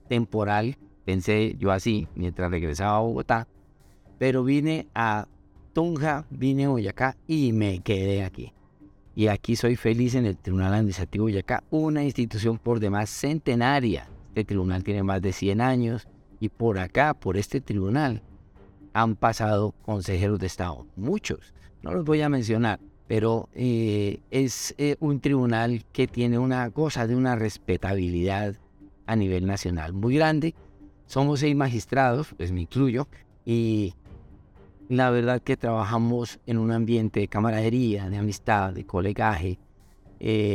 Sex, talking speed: male, 145 wpm